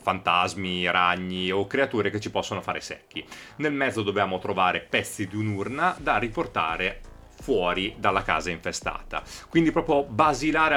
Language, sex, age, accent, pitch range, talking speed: Italian, male, 30-49, native, 95-130 Hz, 140 wpm